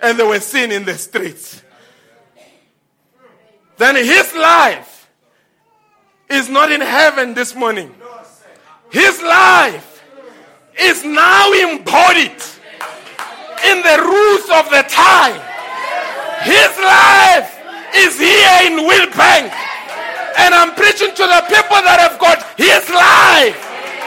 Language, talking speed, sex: English, 110 wpm, male